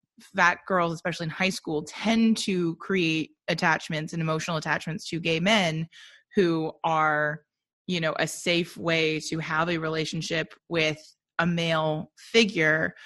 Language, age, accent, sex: English, 20-39, American, female